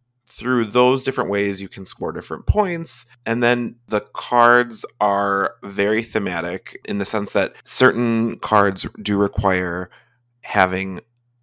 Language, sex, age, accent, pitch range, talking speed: English, male, 30-49, American, 95-120 Hz, 130 wpm